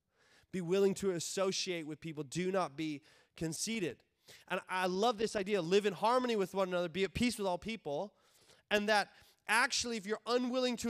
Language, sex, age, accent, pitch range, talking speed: English, male, 20-39, American, 175-225 Hz, 185 wpm